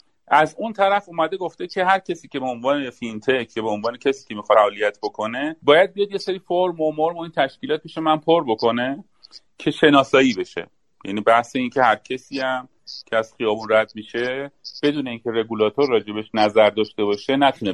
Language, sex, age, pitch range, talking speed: Persian, male, 40-59, 115-165 Hz, 200 wpm